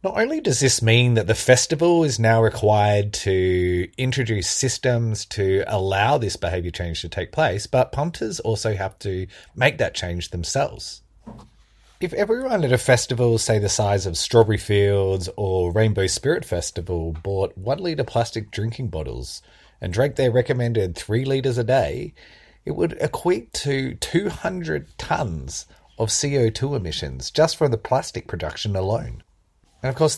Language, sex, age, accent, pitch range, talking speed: English, male, 30-49, Australian, 95-130 Hz, 155 wpm